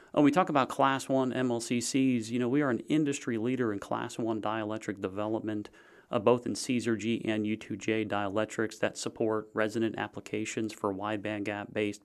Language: English